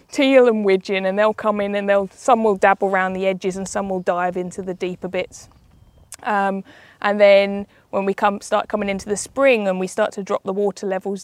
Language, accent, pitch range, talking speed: English, British, 185-205 Hz, 225 wpm